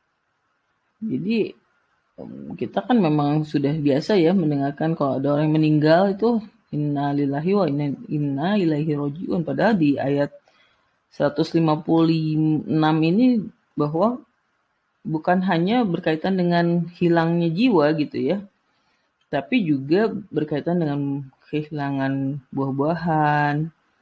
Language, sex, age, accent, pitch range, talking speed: Indonesian, female, 30-49, native, 140-190 Hz, 95 wpm